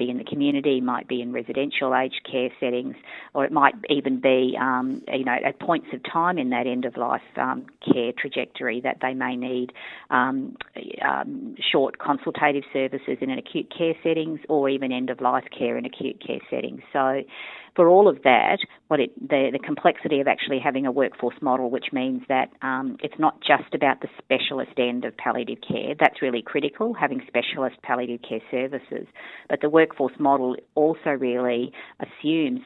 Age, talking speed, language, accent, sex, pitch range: 40-59, 180 wpm, English, Australian, female, 125-145 Hz